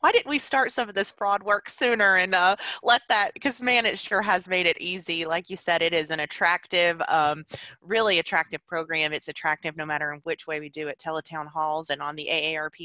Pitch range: 155-205 Hz